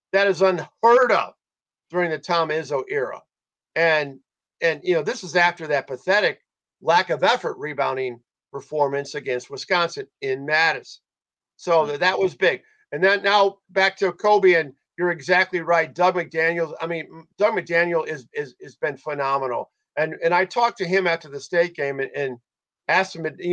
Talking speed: 170 wpm